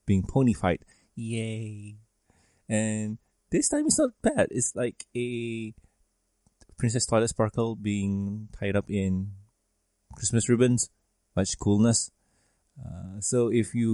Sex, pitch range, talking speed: male, 100-120 Hz, 120 wpm